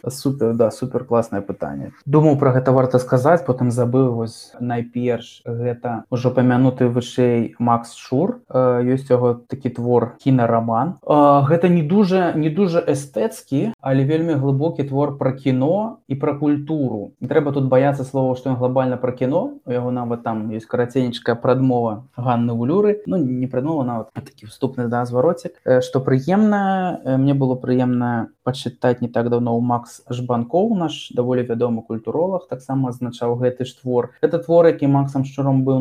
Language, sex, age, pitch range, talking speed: Ukrainian, male, 20-39, 120-145 Hz, 170 wpm